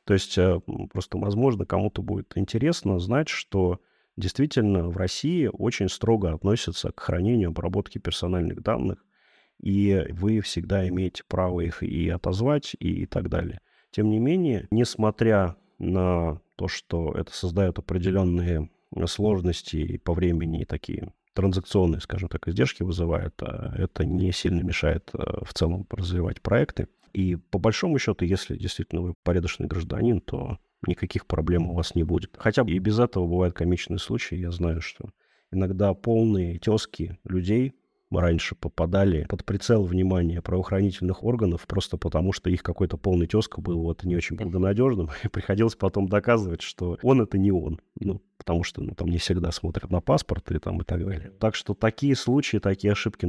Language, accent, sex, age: Russian, native, male, 30-49